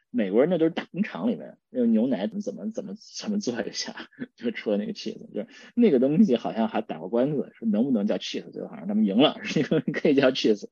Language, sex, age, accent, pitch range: Chinese, male, 20-39, native, 145-230 Hz